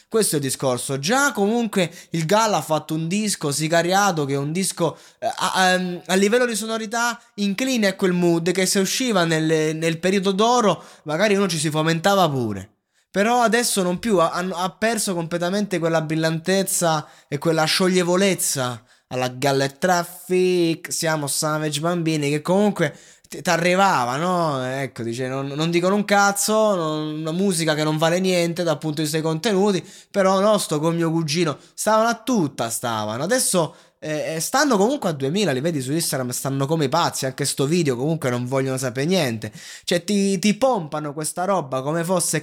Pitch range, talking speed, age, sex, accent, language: 150-195 Hz, 170 wpm, 20-39, male, native, Italian